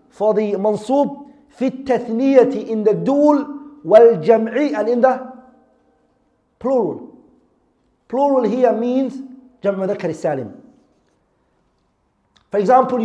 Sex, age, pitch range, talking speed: male, 50-69, 145-245 Hz, 85 wpm